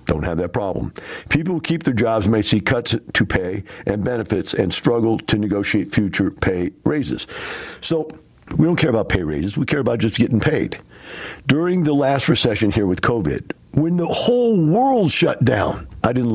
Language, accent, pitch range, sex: English, American, 95-145 Hz, male